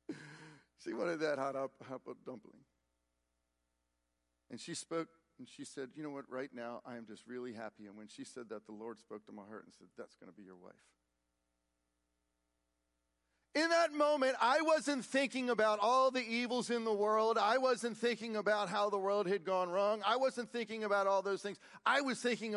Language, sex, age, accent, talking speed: English, male, 40-59, American, 200 wpm